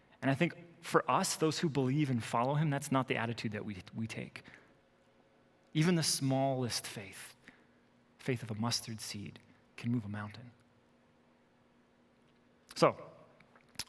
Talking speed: 145 wpm